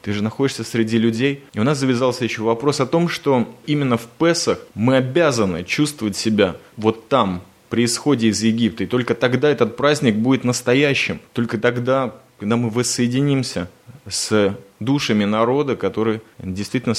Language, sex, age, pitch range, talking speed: Russian, male, 20-39, 105-130 Hz, 155 wpm